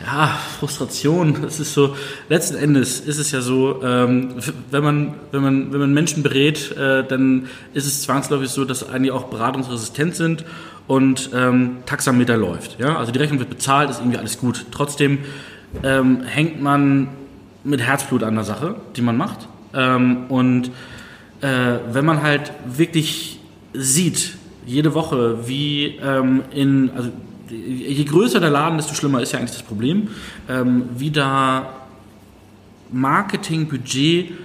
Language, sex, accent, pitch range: German, male, German, 130-155 Hz